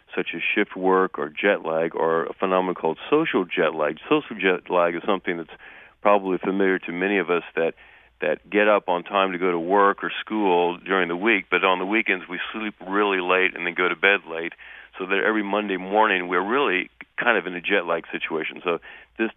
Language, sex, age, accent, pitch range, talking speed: English, male, 40-59, American, 85-105 Hz, 220 wpm